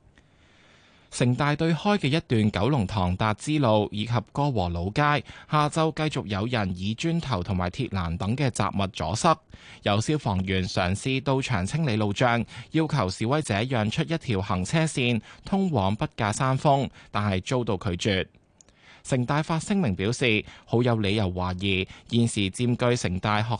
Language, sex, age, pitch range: Chinese, male, 20-39, 100-140 Hz